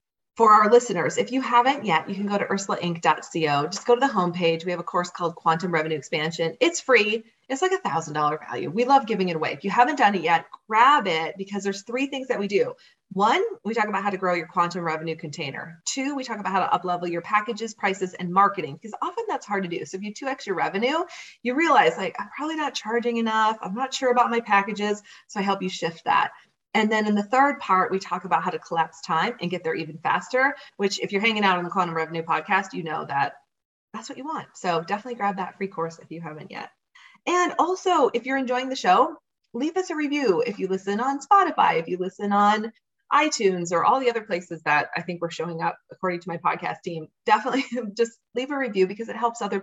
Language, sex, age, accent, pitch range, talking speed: English, female, 30-49, American, 175-250 Hz, 240 wpm